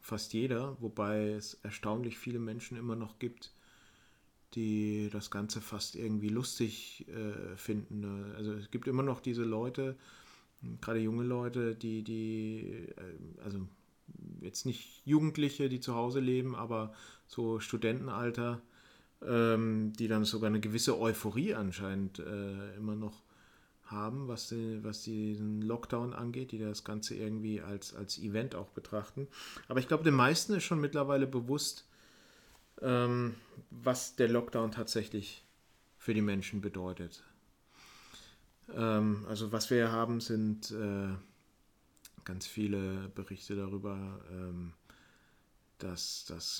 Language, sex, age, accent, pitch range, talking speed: German, male, 40-59, German, 105-120 Hz, 125 wpm